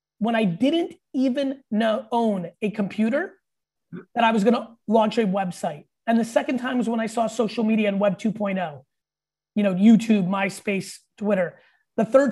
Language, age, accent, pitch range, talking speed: English, 30-49, American, 205-245 Hz, 170 wpm